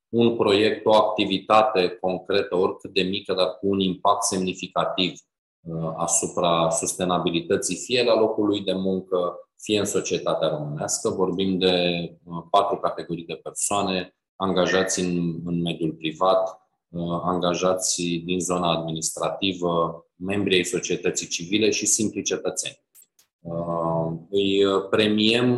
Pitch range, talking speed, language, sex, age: 85-95 Hz, 120 wpm, Romanian, male, 20-39